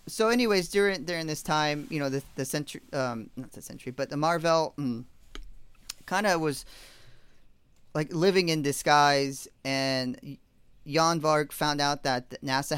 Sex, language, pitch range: male, English, 125-145 Hz